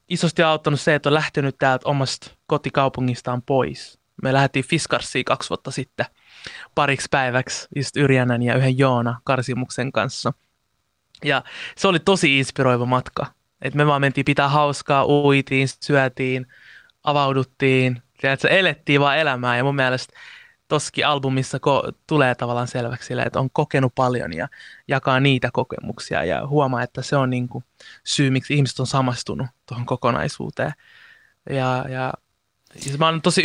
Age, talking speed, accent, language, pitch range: 20-39, 145 wpm, native, Finnish, 125-145 Hz